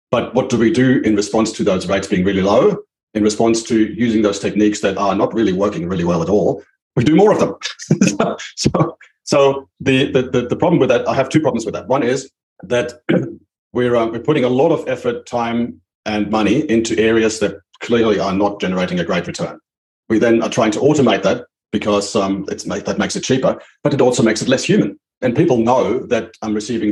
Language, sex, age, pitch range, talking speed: English, male, 40-59, 105-130 Hz, 225 wpm